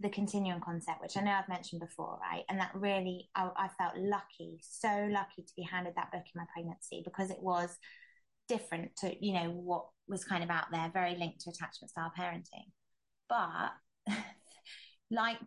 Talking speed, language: 180 wpm, English